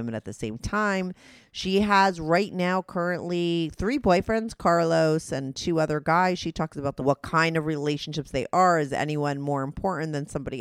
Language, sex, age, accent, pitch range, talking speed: English, female, 30-49, American, 135-180 Hz, 185 wpm